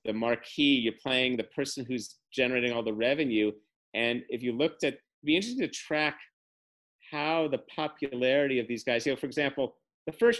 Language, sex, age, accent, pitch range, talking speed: English, male, 40-59, American, 125-170 Hz, 190 wpm